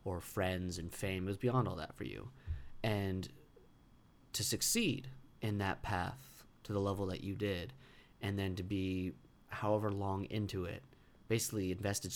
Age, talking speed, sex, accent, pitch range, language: 30-49, 165 wpm, male, American, 95-110 Hz, English